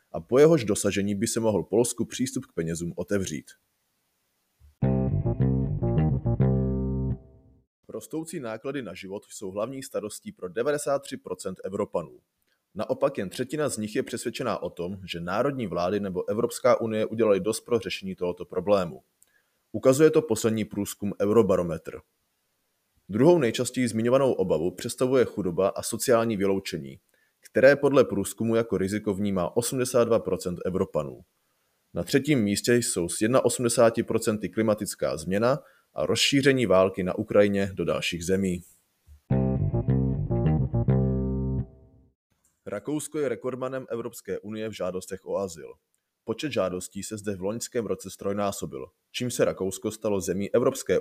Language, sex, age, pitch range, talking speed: Czech, male, 30-49, 90-120 Hz, 120 wpm